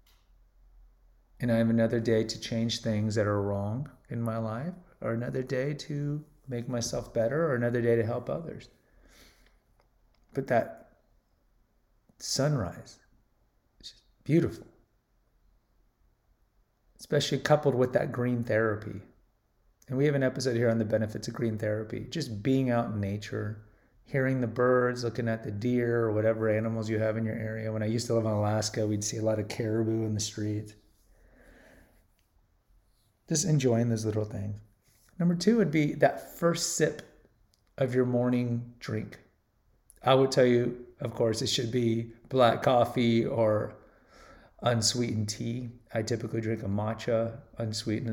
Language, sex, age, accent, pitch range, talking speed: English, male, 30-49, American, 110-125 Hz, 155 wpm